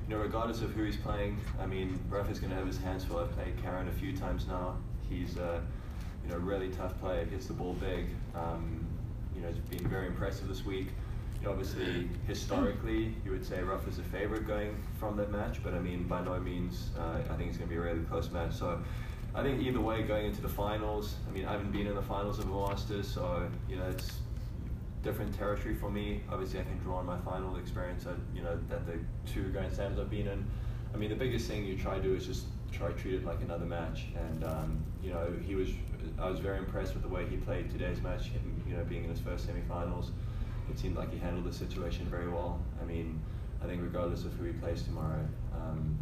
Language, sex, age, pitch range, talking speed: English, male, 20-39, 90-105 Hz, 240 wpm